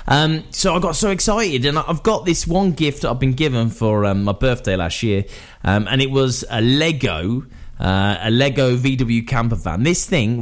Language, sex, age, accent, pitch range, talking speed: English, male, 20-39, British, 120-190 Hz, 190 wpm